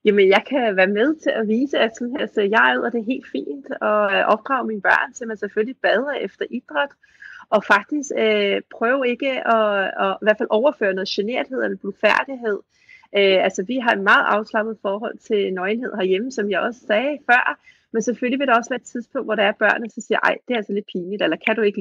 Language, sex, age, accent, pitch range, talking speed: Danish, female, 30-49, native, 200-245 Hz, 230 wpm